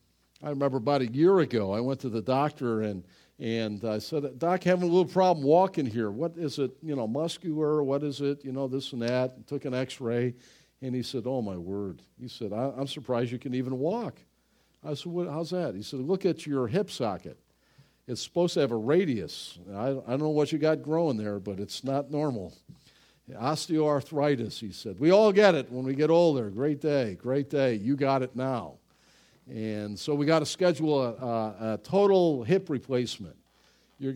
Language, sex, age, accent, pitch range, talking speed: English, male, 50-69, American, 120-160 Hz, 205 wpm